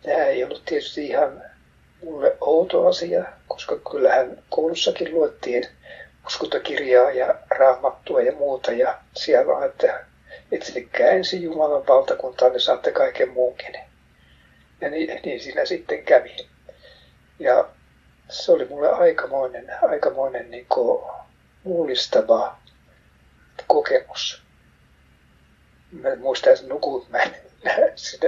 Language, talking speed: Finnish, 100 wpm